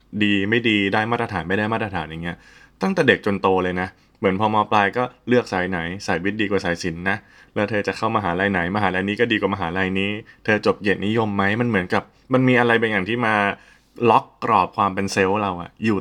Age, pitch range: 20-39, 90-105 Hz